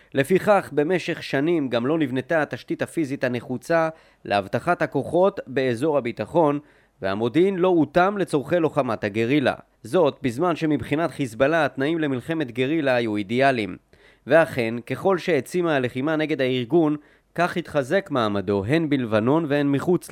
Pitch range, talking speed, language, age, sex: 125-165 Hz, 120 wpm, Hebrew, 30-49, male